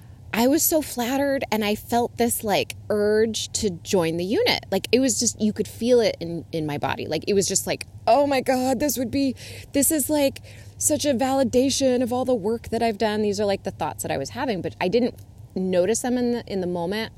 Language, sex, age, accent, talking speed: English, female, 20-39, American, 240 wpm